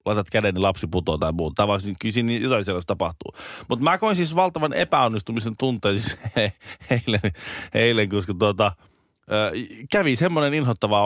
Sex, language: male, Finnish